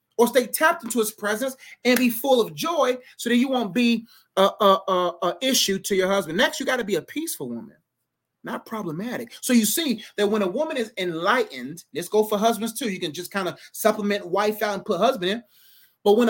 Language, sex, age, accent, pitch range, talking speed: English, male, 30-49, American, 190-240 Hz, 230 wpm